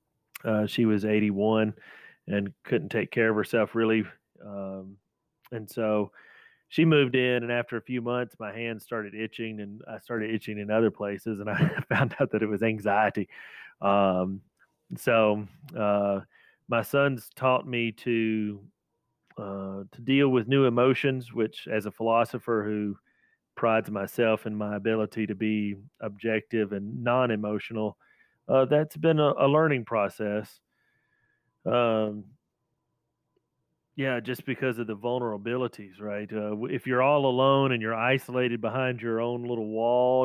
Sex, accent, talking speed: male, American, 145 wpm